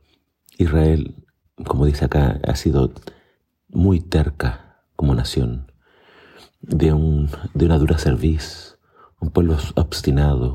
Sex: male